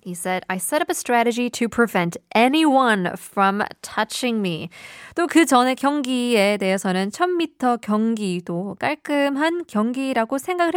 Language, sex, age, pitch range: Korean, female, 20-39, 185-245 Hz